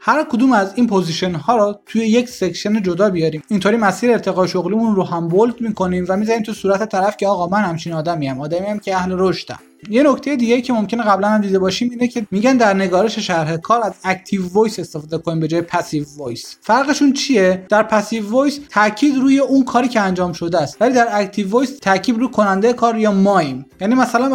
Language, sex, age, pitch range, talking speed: Persian, male, 30-49, 185-230 Hz, 210 wpm